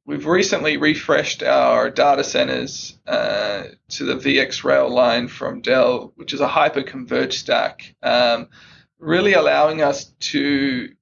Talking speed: 125 wpm